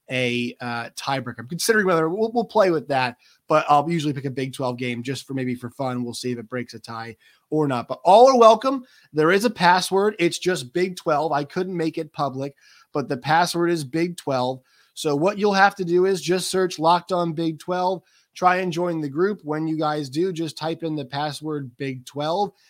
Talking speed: 220 wpm